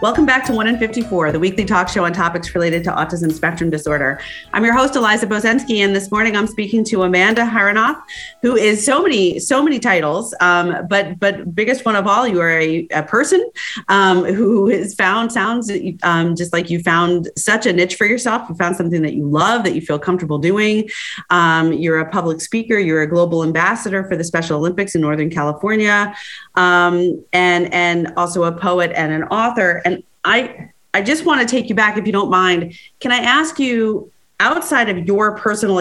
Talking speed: 205 wpm